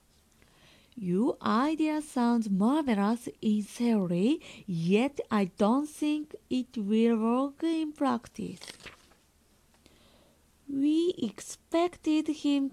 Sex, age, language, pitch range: female, 20-39, Japanese, 200-290 Hz